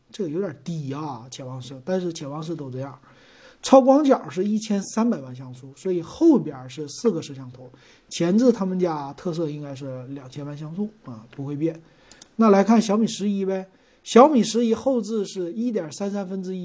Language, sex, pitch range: Chinese, male, 140-205 Hz